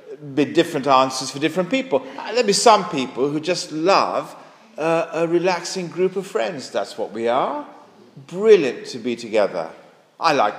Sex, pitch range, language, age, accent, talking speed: male, 135-200 Hz, English, 50-69, British, 165 wpm